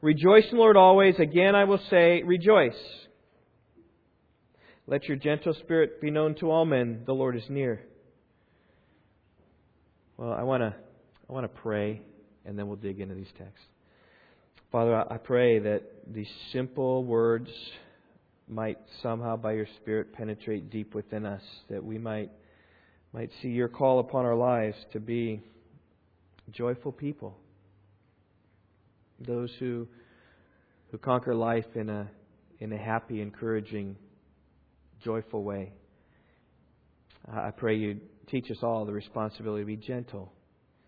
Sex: male